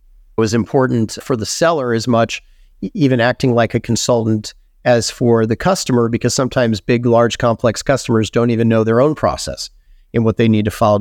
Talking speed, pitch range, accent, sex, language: 190 wpm, 110-135 Hz, American, male, English